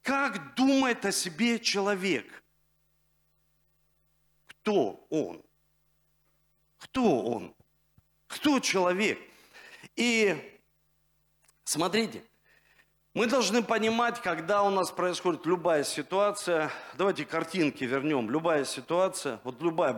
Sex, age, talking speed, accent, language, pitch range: male, 50-69, 85 wpm, native, Russian, 170-255 Hz